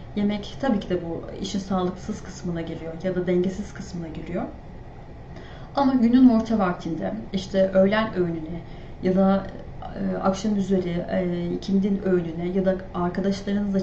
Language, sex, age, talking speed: Turkish, female, 30-49, 140 wpm